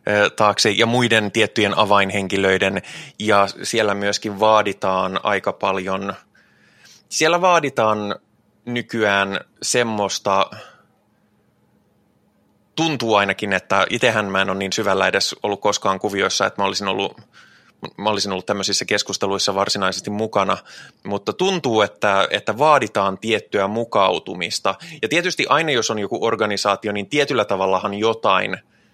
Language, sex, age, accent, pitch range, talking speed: Finnish, male, 20-39, native, 95-110 Hz, 115 wpm